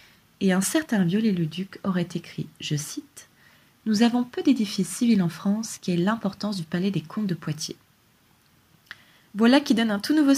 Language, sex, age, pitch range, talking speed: French, female, 20-39, 175-230 Hz, 185 wpm